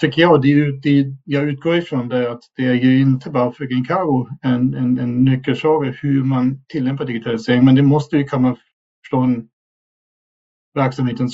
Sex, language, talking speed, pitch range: male, Swedish, 160 wpm, 125-145 Hz